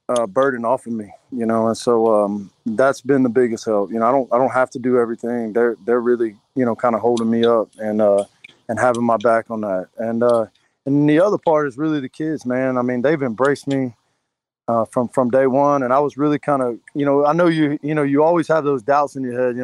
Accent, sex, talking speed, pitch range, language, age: American, male, 265 wpm, 115-140 Hz, English, 20-39